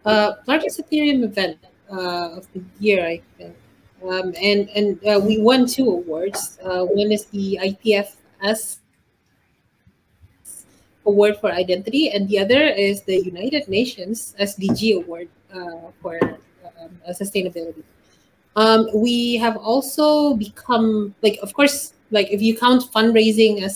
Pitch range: 185-225 Hz